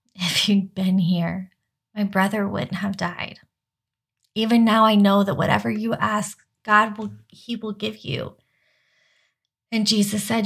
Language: English